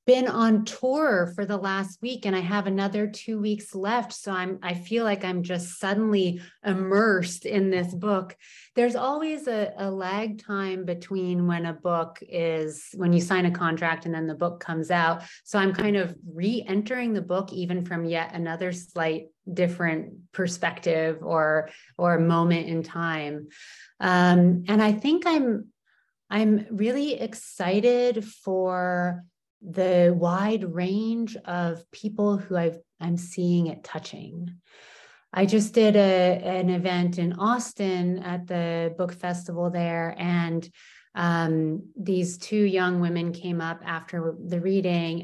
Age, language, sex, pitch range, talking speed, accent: 30-49, English, female, 170-205 Hz, 150 wpm, American